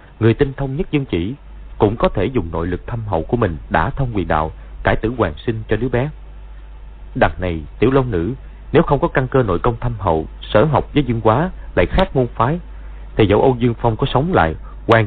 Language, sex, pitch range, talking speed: Vietnamese, male, 95-120 Hz, 235 wpm